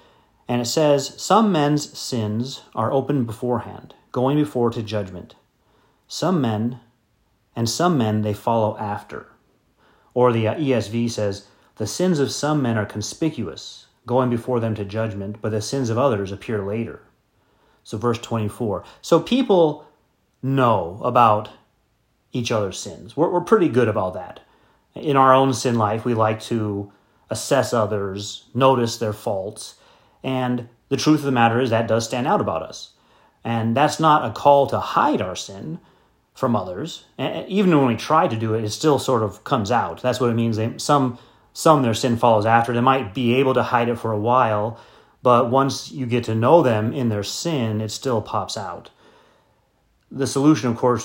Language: English